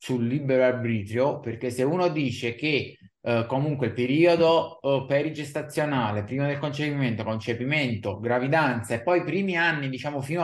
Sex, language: male, Italian